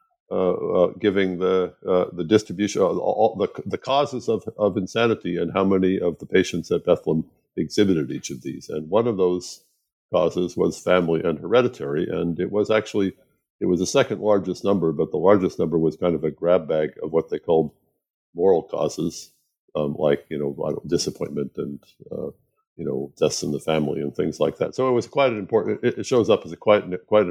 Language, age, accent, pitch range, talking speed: English, 60-79, American, 80-110 Hz, 200 wpm